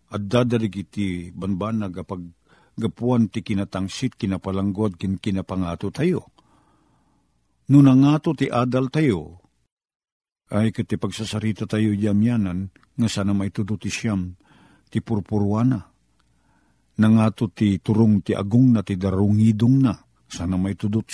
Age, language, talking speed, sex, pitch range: 50-69, Filipino, 110 wpm, male, 95-115 Hz